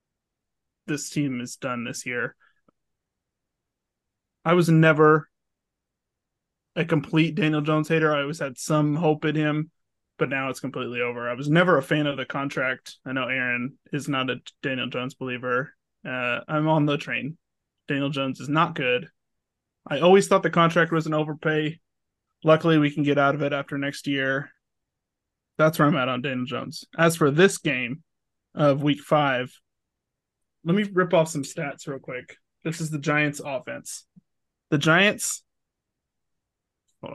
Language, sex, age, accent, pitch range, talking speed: English, male, 20-39, American, 140-160 Hz, 165 wpm